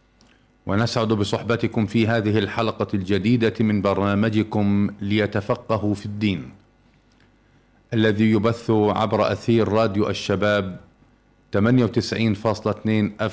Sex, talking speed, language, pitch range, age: male, 80 wpm, Arabic, 105-120 Hz, 40-59